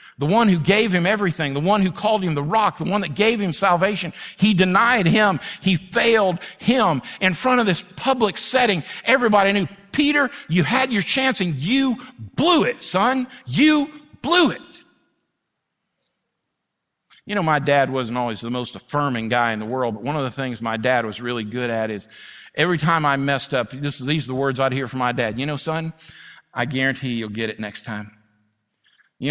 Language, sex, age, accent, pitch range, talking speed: English, male, 50-69, American, 120-170 Hz, 195 wpm